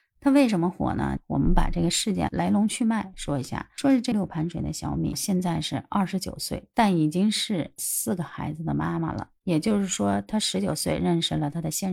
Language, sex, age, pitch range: Chinese, female, 30-49, 155-190 Hz